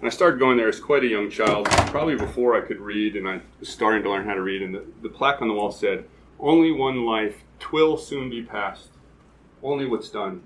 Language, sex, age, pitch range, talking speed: English, male, 30-49, 110-160 Hz, 240 wpm